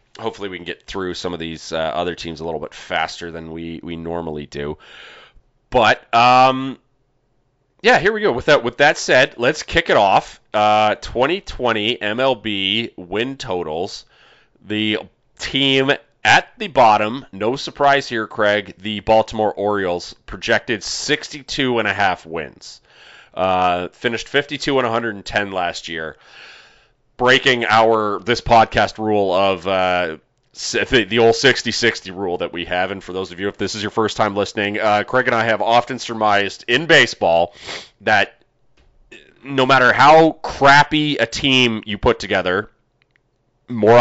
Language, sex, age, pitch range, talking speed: English, male, 30-49, 100-130 Hz, 160 wpm